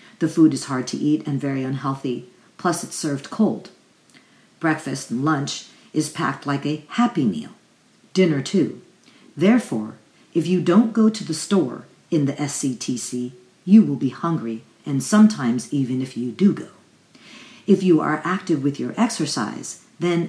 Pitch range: 135-185 Hz